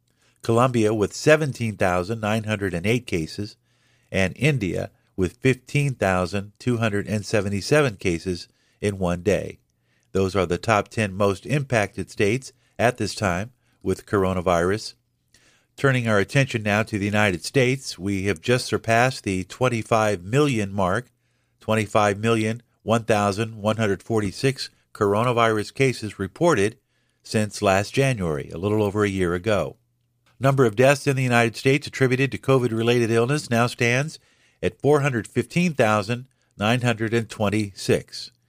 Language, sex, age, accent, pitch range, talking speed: English, male, 50-69, American, 100-125 Hz, 110 wpm